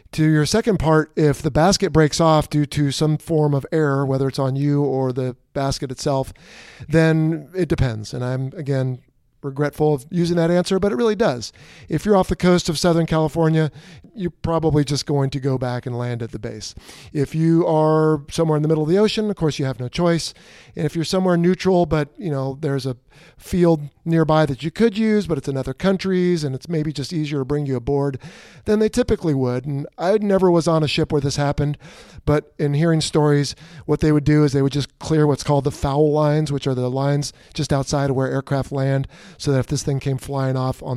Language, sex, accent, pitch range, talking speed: English, male, American, 130-160 Hz, 225 wpm